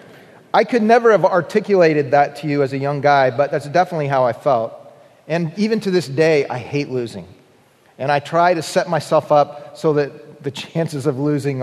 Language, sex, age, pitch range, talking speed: English, male, 40-59, 140-175 Hz, 200 wpm